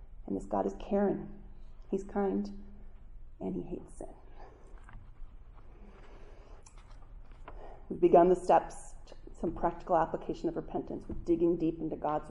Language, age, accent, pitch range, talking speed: English, 30-49, American, 150-195 Hz, 125 wpm